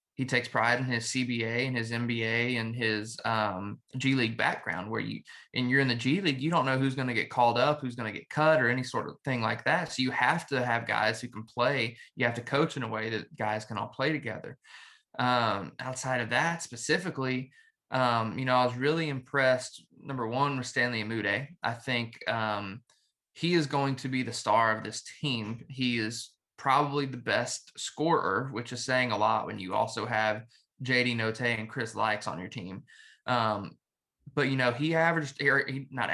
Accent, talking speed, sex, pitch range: American, 210 wpm, male, 115-135 Hz